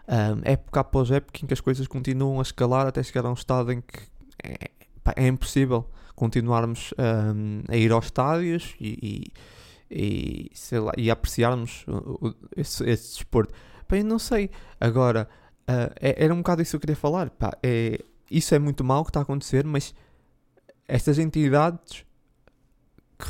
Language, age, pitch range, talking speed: Portuguese, 20-39, 115-145 Hz, 175 wpm